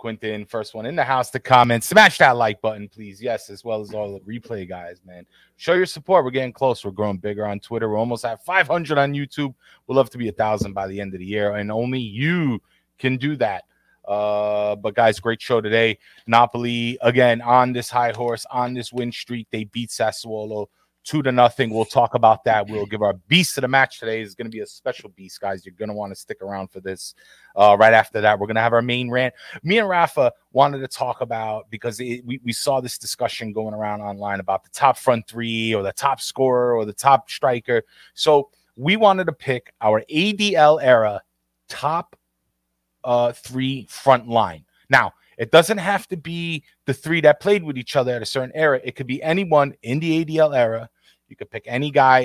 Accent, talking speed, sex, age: American, 220 wpm, male, 30-49